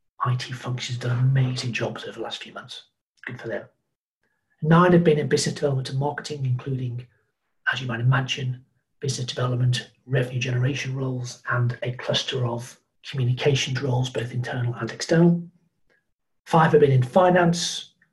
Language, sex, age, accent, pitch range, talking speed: English, male, 40-59, British, 125-140 Hz, 150 wpm